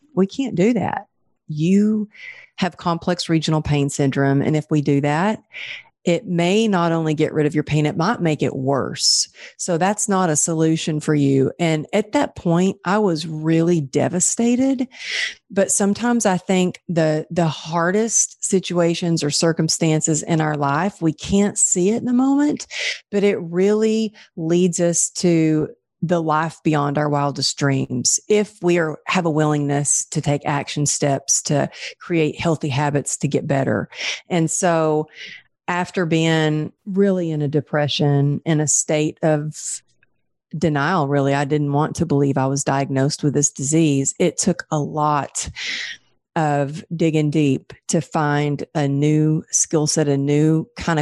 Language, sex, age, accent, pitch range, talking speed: English, female, 40-59, American, 145-185 Hz, 155 wpm